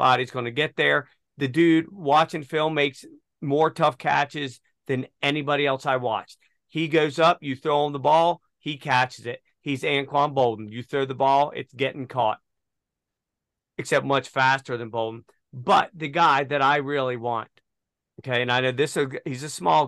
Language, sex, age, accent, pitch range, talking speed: English, male, 40-59, American, 130-155 Hz, 180 wpm